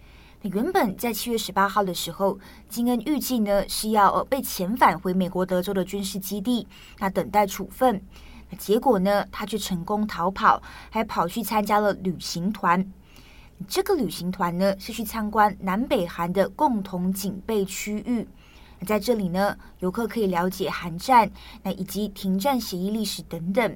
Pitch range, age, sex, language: 185-230 Hz, 20-39, female, Chinese